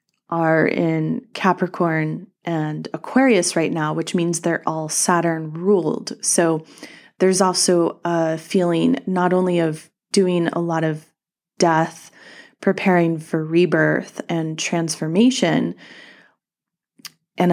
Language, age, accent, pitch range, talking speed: English, 20-39, American, 165-190 Hz, 110 wpm